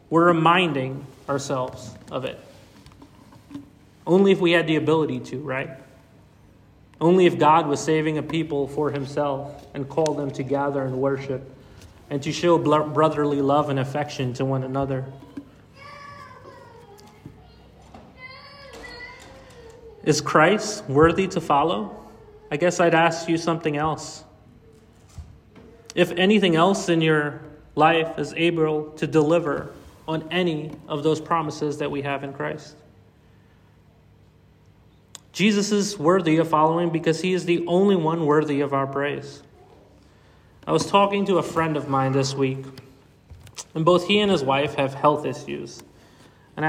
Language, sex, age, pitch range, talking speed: English, male, 30-49, 140-165 Hz, 135 wpm